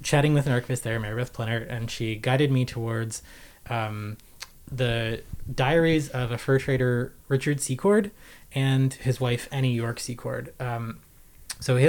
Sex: male